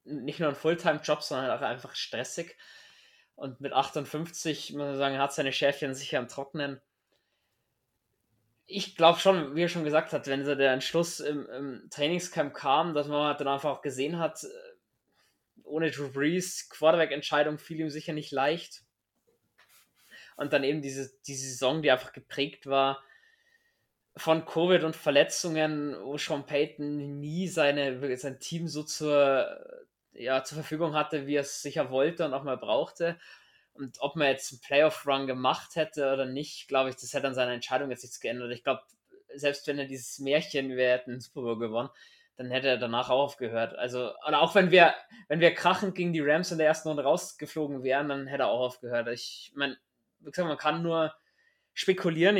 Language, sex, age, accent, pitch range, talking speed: German, male, 20-39, German, 135-160 Hz, 175 wpm